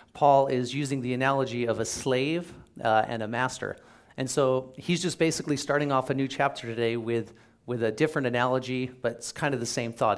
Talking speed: 205 wpm